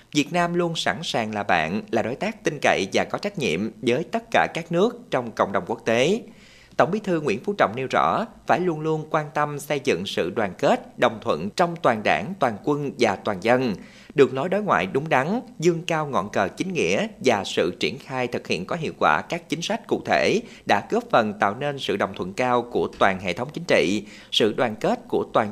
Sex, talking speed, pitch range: male, 235 wpm, 125-190 Hz